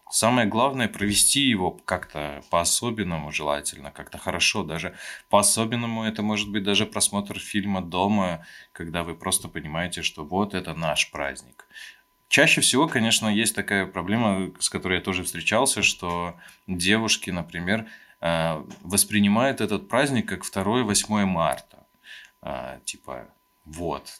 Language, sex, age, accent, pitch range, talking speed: Russian, male, 20-39, native, 85-105 Hz, 120 wpm